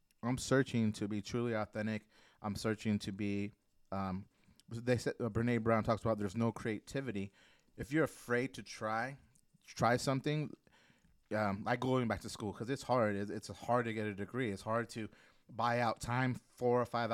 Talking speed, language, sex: 180 wpm, English, male